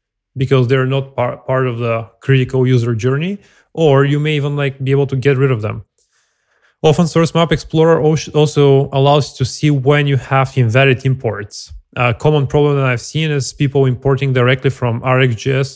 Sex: male